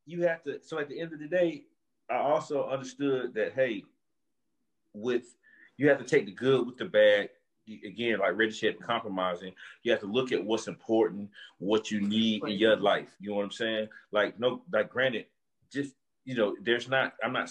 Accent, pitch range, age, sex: American, 100-135 Hz, 30-49, male